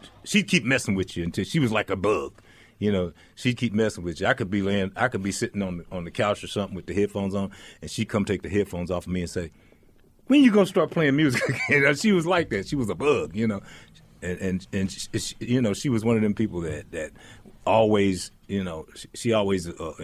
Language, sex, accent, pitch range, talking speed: English, male, American, 85-110 Hz, 260 wpm